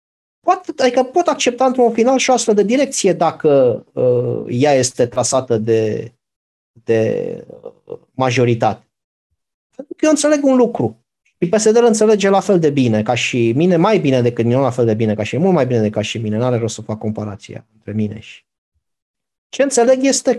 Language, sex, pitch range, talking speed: Romanian, male, 120-195 Hz, 180 wpm